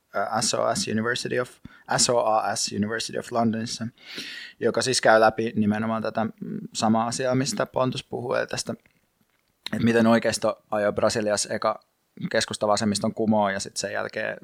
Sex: male